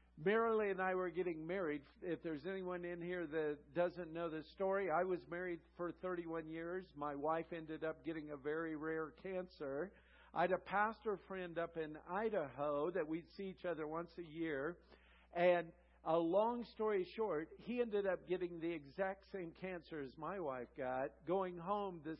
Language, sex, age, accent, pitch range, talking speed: English, male, 50-69, American, 160-190 Hz, 180 wpm